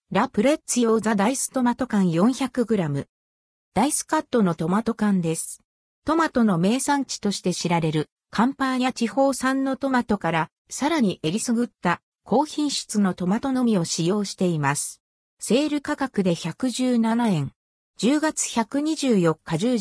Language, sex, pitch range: Japanese, female, 175-260 Hz